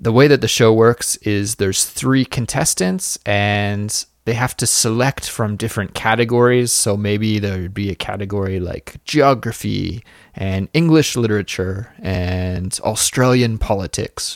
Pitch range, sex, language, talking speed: 100-120 Hz, male, English, 140 wpm